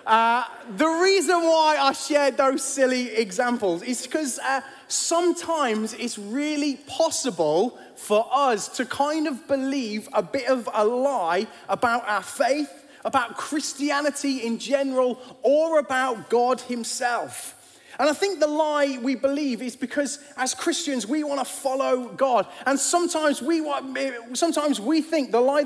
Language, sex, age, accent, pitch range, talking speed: English, male, 20-39, British, 240-285 Hz, 145 wpm